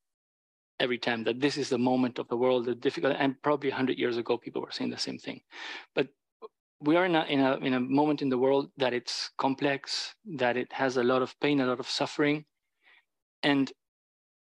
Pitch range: 125-150 Hz